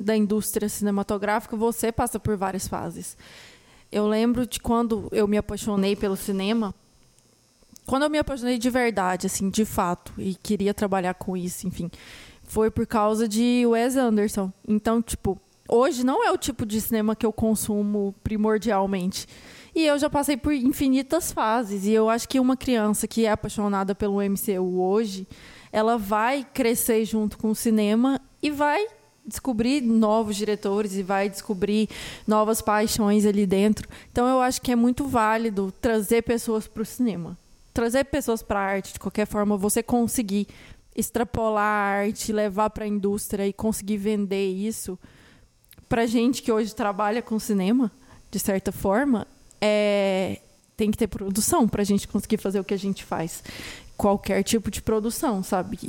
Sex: female